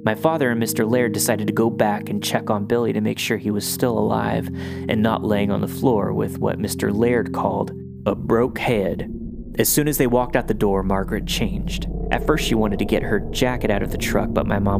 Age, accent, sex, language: 20-39, American, male, English